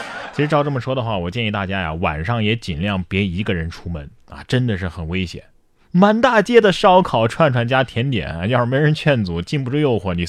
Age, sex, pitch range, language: 20-39, male, 105-175 Hz, Chinese